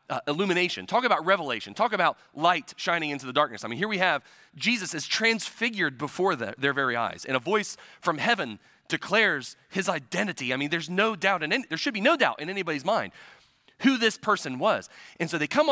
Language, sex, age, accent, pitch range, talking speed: English, male, 30-49, American, 130-195 Hz, 215 wpm